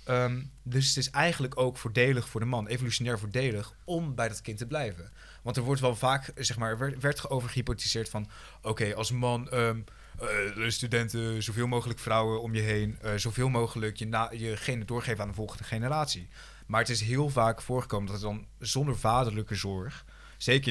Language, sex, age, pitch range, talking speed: Dutch, male, 20-39, 105-125 Hz, 195 wpm